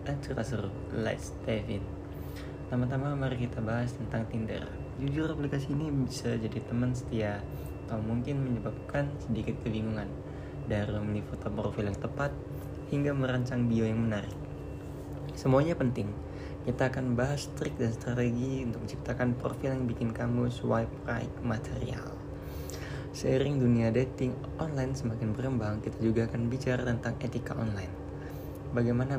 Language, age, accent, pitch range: Indonesian, 20-39, native, 110-130 Hz